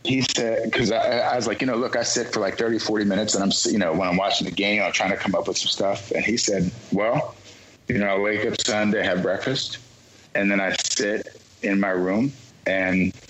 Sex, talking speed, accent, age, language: male, 245 wpm, American, 50-69, English